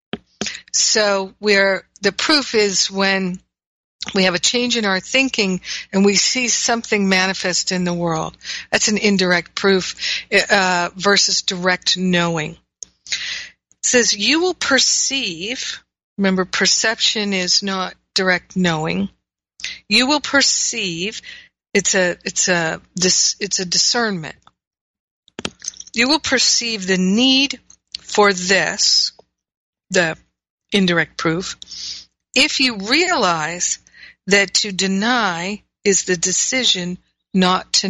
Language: English